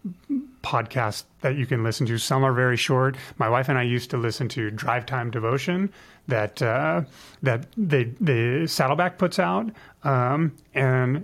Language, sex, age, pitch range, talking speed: English, male, 30-49, 125-155 Hz, 165 wpm